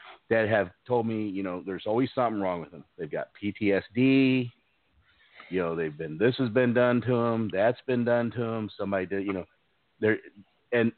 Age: 50-69